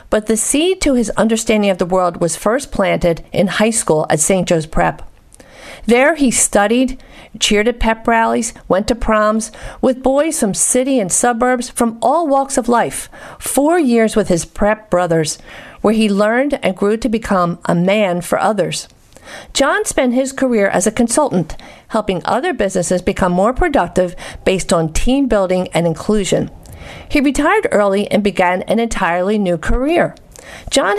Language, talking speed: English, 165 wpm